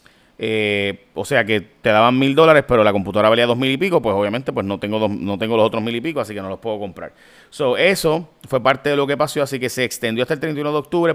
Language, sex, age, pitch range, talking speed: Spanish, male, 30-49, 110-145 Hz, 280 wpm